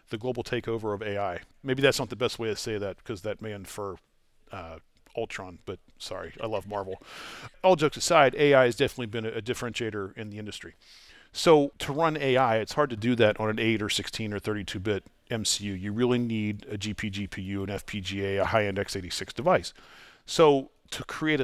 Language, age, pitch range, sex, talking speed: English, 40-59, 100-120 Hz, male, 190 wpm